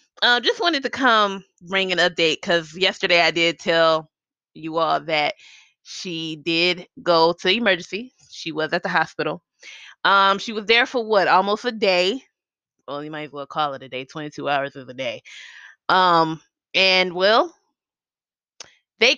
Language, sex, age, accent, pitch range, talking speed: English, female, 20-39, American, 175-250 Hz, 170 wpm